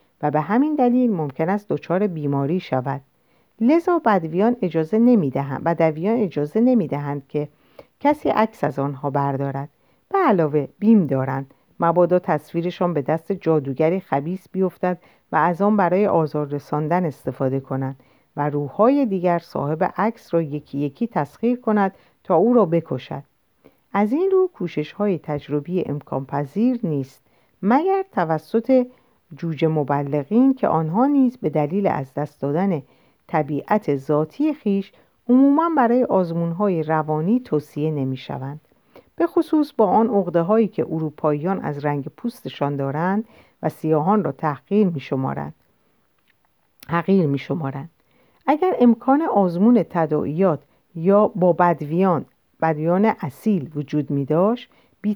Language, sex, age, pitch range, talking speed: Persian, female, 50-69, 145-215 Hz, 125 wpm